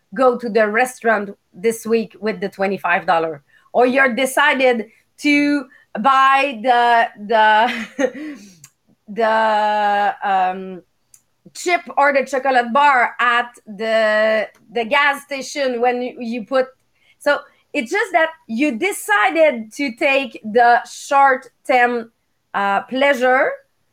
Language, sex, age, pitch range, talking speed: English, female, 30-49, 230-290 Hz, 110 wpm